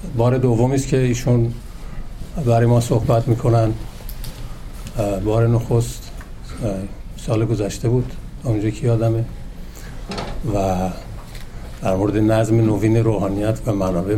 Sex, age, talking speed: male, 50-69, 110 wpm